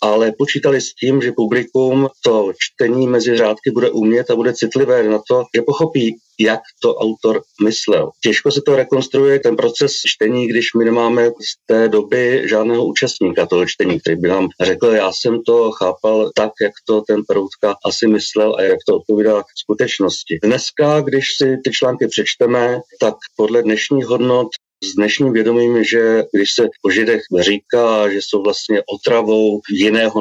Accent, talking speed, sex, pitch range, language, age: native, 170 wpm, male, 110-135 Hz, Czech, 40-59